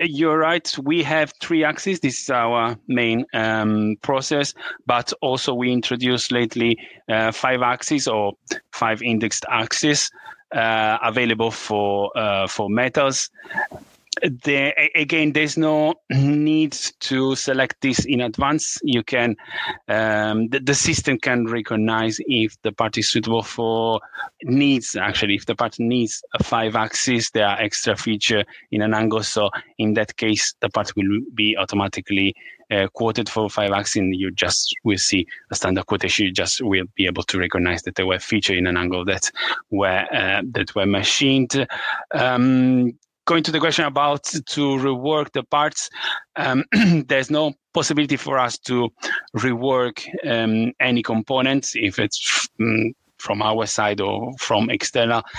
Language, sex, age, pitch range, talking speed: English, male, 30-49, 105-135 Hz, 155 wpm